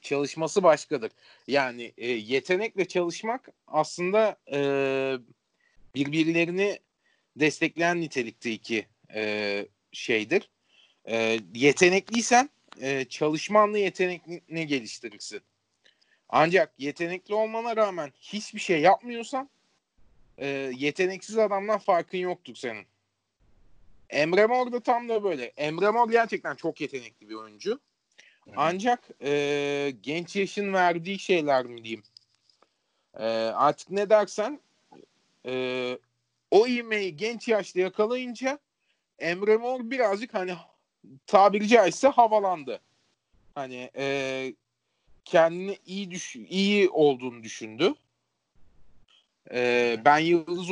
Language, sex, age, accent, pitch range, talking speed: Turkish, male, 40-59, native, 125-205 Hz, 95 wpm